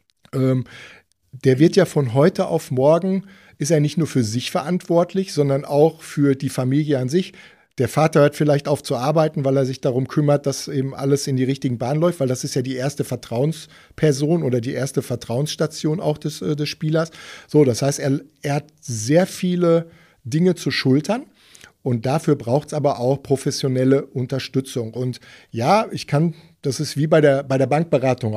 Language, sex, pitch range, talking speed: German, male, 130-155 Hz, 190 wpm